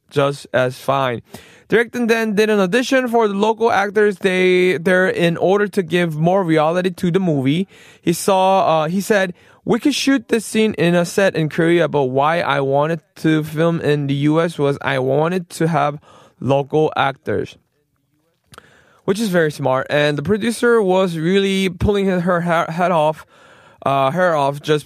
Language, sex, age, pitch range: Korean, male, 20-39, 150-195 Hz